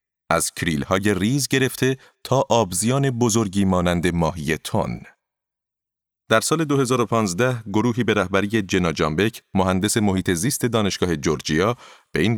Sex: male